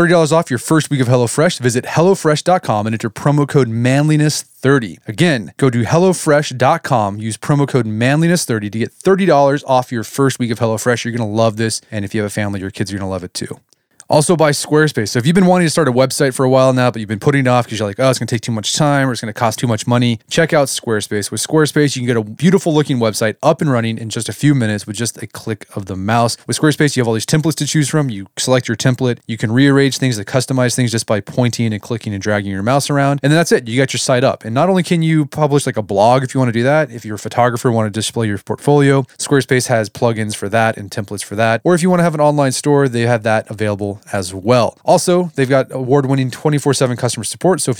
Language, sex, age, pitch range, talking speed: English, male, 20-39, 110-145 Hz, 270 wpm